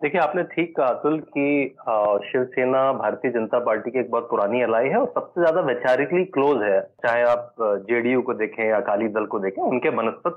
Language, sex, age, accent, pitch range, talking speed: Hindi, male, 30-49, native, 150-215 Hz, 195 wpm